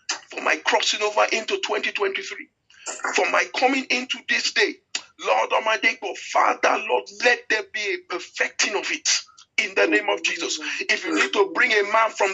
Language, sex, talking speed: English, male, 180 wpm